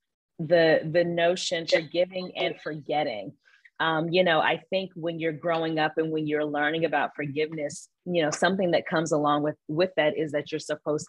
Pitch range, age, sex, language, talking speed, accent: 160-200 Hz, 30-49, female, English, 190 wpm, American